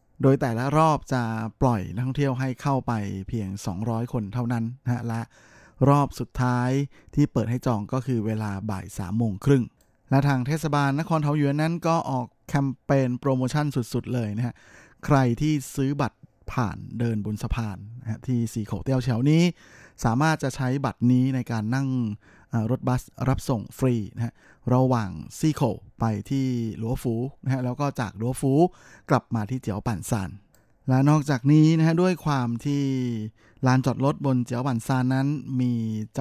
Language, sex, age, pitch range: Thai, male, 20-39, 115-135 Hz